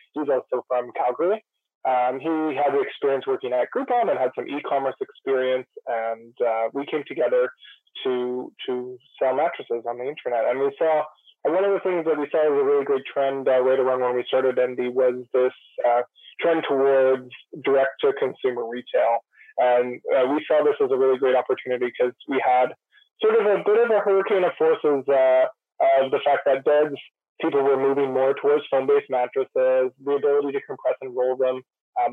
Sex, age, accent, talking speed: male, 20-39, American, 190 wpm